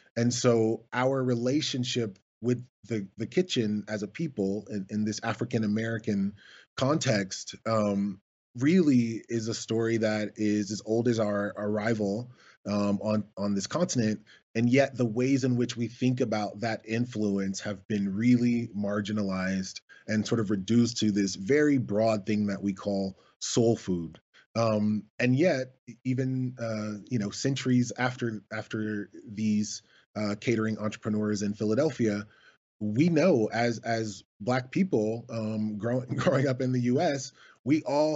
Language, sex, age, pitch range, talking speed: English, male, 20-39, 105-120 Hz, 150 wpm